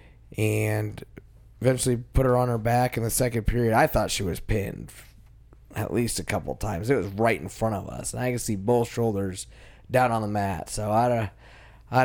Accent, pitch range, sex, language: American, 105-125 Hz, male, English